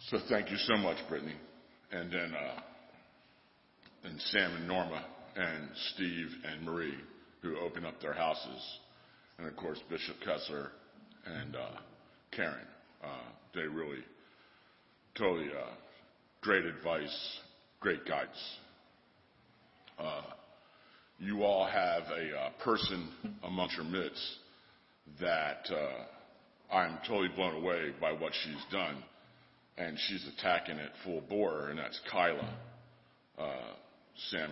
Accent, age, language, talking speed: American, 50-69, English, 120 wpm